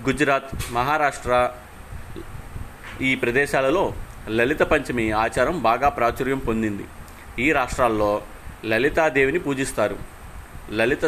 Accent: native